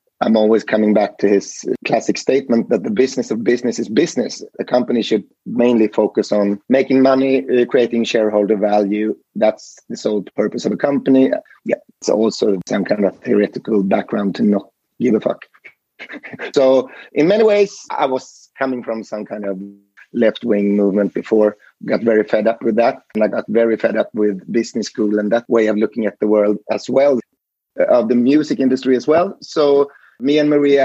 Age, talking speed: 30-49, 185 wpm